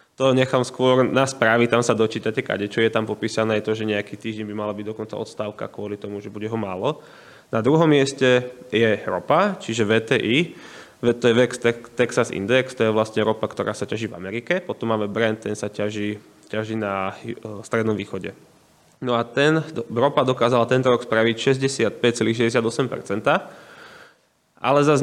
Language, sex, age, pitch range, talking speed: Slovak, male, 20-39, 110-130 Hz, 170 wpm